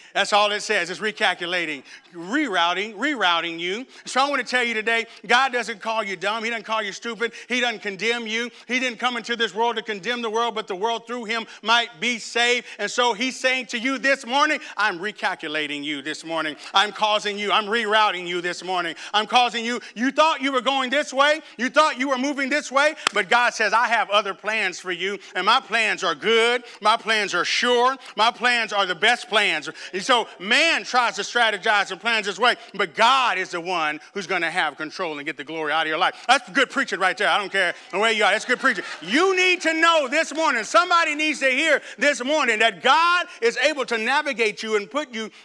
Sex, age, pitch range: male, 40-59, 200-255 Hz